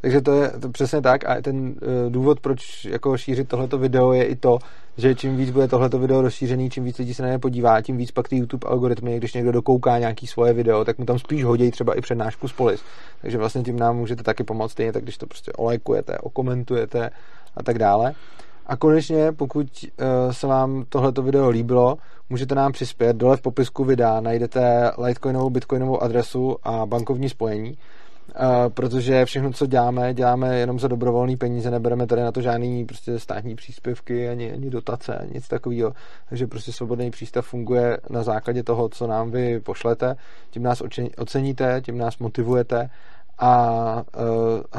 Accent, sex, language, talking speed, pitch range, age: native, male, Czech, 180 wpm, 120-130 Hz, 30-49